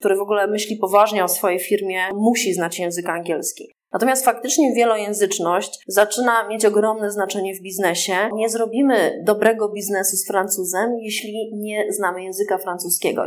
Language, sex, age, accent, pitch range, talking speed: Polish, female, 20-39, native, 190-220 Hz, 145 wpm